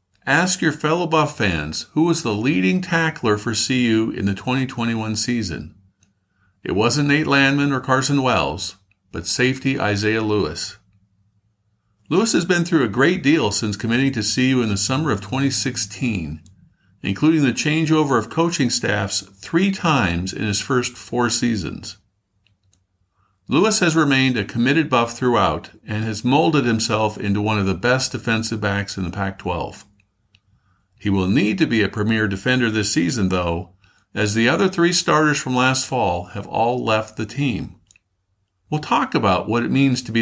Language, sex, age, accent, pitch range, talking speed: English, male, 50-69, American, 100-130 Hz, 165 wpm